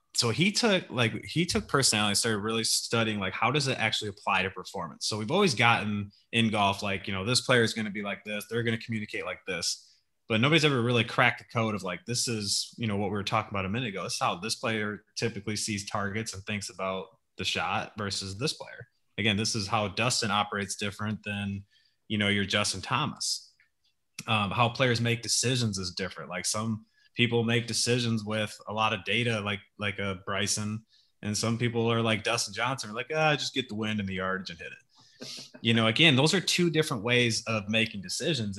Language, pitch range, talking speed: English, 105-120 Hz, 225 wpm